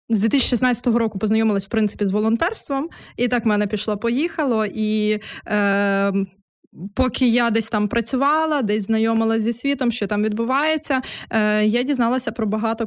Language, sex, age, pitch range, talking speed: Ukrainian, female, 20-39, 210-240 Hz, 145 wpm